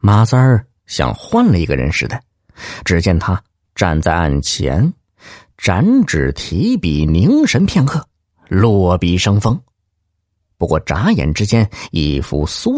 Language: Chinese